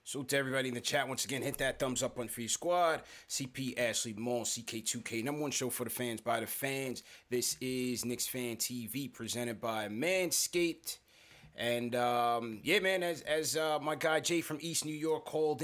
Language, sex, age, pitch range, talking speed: English, male, 20-39, 115-140 Hz, 200 wpm